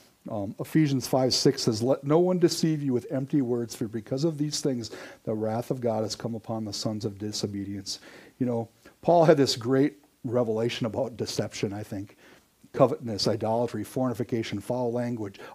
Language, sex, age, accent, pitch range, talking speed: English, male, 60-79, American, 115-150 Hz, 175 wpm